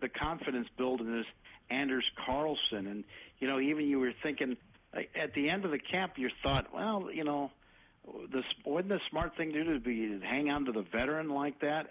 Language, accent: English, American